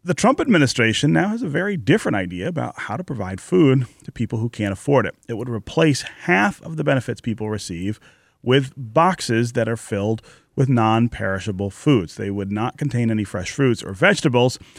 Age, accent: 30-49, American